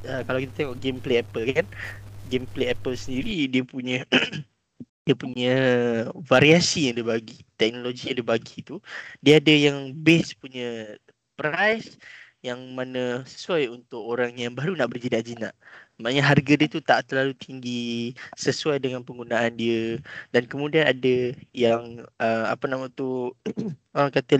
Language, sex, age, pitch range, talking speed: Malay, male, 20-39, 115-140 Hz, 140 wpm